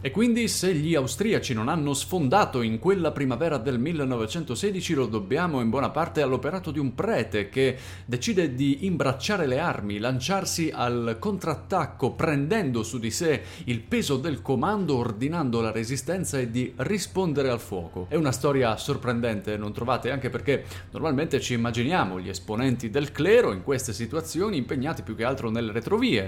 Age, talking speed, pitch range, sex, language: 30-49, 160 wpm, 115-155 Hz, male, Italian